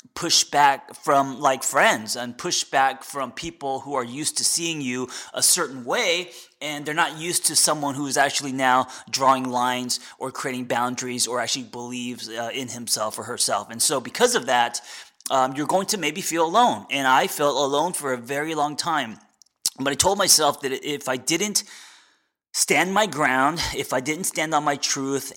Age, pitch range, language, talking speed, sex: 20-39, 125-150 Hz, English, 190 wpm, male